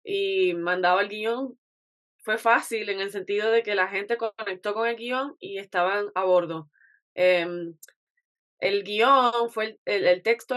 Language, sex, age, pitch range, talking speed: Spanish, female, 20-39, 190-235 Hz, 155 wpm